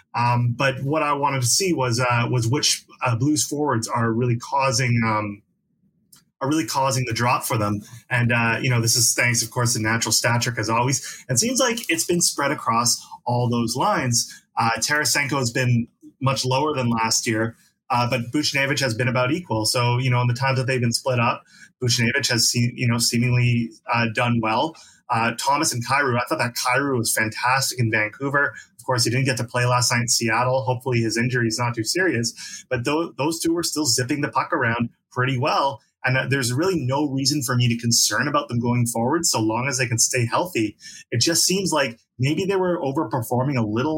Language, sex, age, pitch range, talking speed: English, male, 30-49, 120-150 Hz, 210 wpm